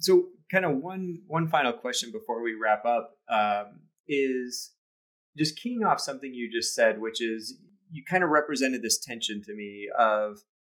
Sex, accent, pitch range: male, American, 115-170 Hz